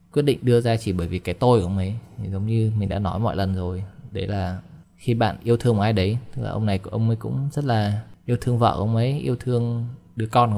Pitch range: 95-115 Hz